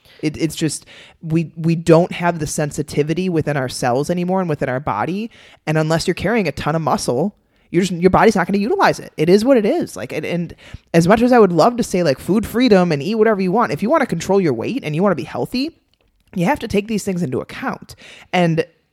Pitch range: 145-200 Hz